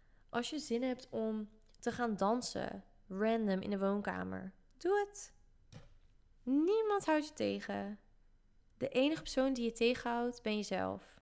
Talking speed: 140 wpm